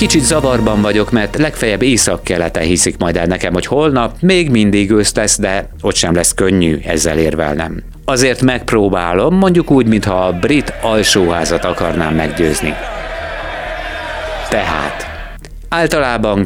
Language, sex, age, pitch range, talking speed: Hungarian, male, 50-69, 90-125 Hz, 130 wpm